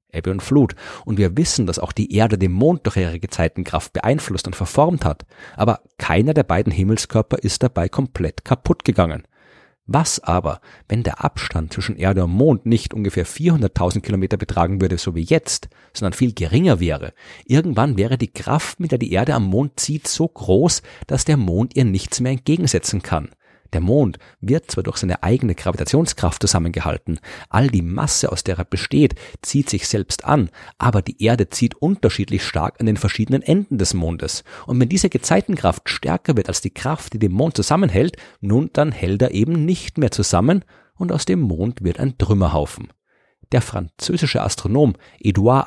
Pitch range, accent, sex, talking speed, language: 95-130 Hz, German, male, 180 wpm, German